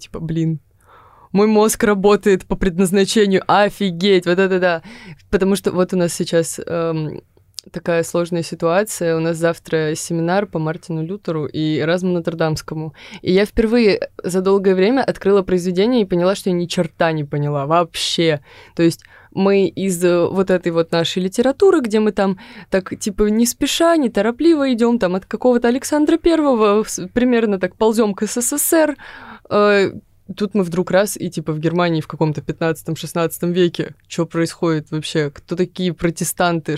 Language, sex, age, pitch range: Russian, female, 20-39, 165-205 Hz